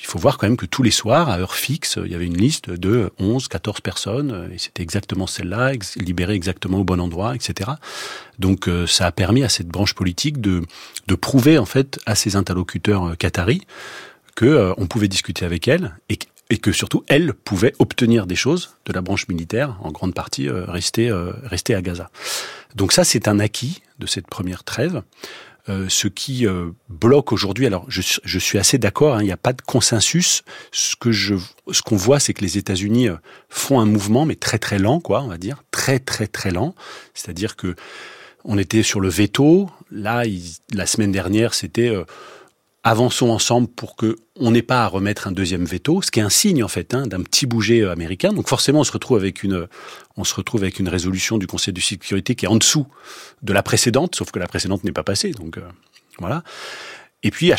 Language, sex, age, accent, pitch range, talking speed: French, male, 40-59, French, 95-120 Hz, 215 wpm